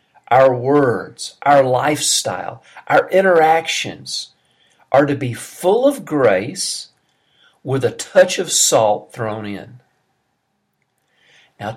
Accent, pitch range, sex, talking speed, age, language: American, 120-165 Hz, male, 100 wpm, 50-69, English